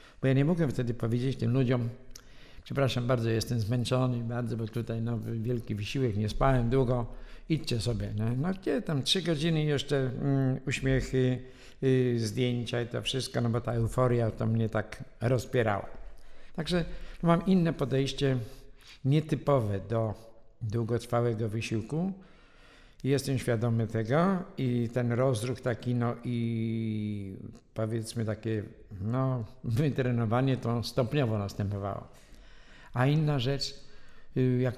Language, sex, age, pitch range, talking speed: English, male, 60-79, 115-130 Hz, 130 wpm